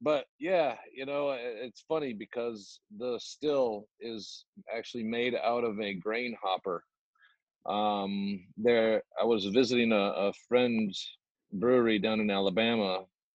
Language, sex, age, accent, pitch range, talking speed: English, male, 40-59, American, 105-120 Hz, 130 wpm